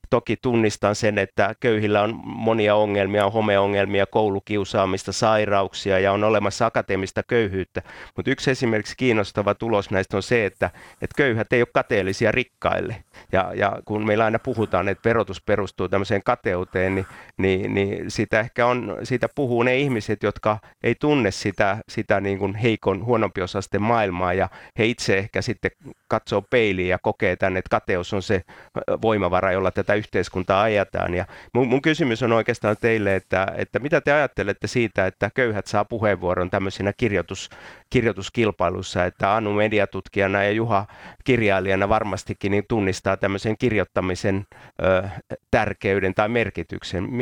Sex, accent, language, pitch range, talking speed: male, native, Finnish, 95-115 Hz, 145 wpm